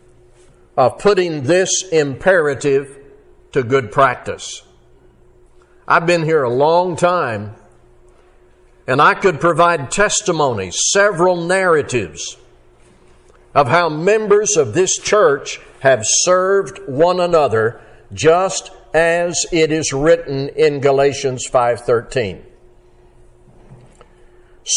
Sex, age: male, 60-79